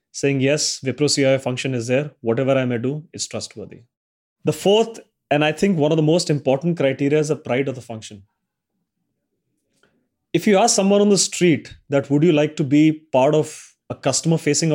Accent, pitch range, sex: Indian, 130-165 Hz, male